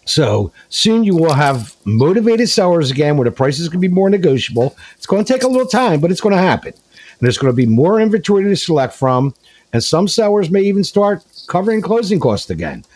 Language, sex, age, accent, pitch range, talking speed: English, male, 50-69, American, 125-195 Hz, 220 wpm